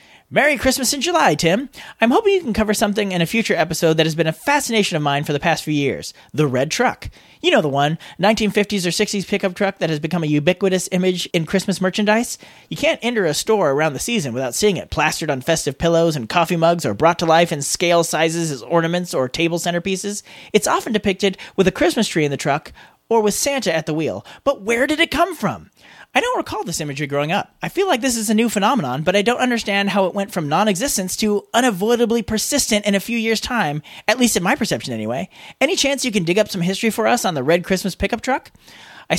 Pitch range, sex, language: 160-225 Hz, male, English